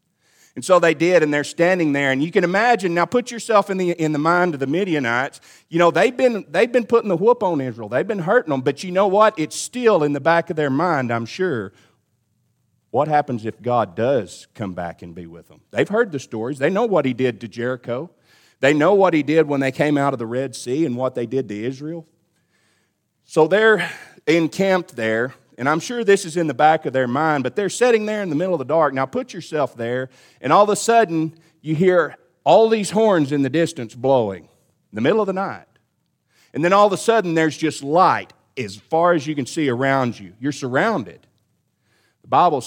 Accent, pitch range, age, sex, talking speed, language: American, 125-180 Hz, 40-59, male, 230 wpm, English